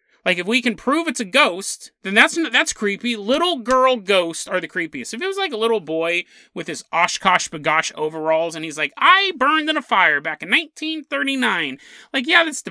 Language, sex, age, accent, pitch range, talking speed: English, male, 30-49, American, 160-245 Hz, 190 wpm